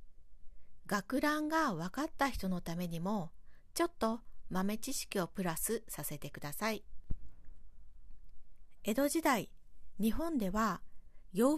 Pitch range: 165-255 Hz